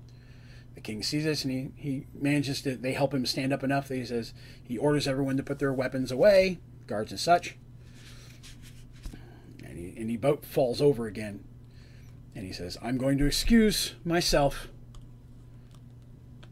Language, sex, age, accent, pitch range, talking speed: English, male, 30-49, American, 120-145 Hz, 165 wpm